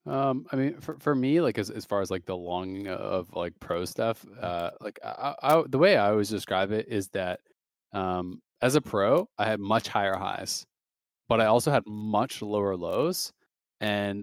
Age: 20-39